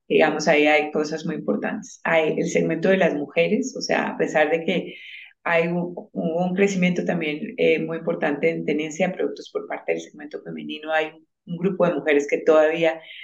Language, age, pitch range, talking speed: Spanish, 30-49, 160-215 Hz, 190 wpm